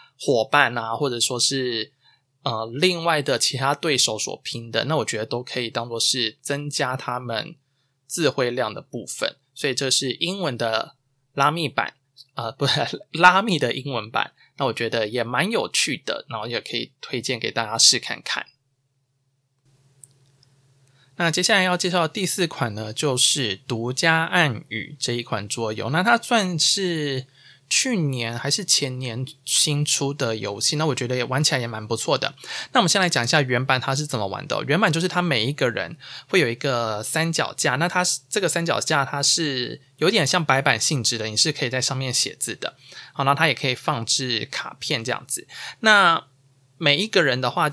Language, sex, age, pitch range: Chinese, male, 20-39, 125-155 Hz